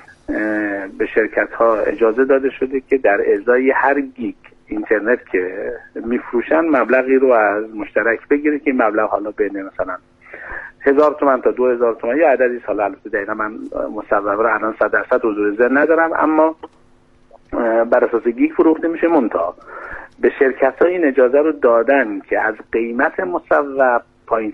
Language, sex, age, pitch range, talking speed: Persian, male, 50-69, 110-145 Hz, 145 wpm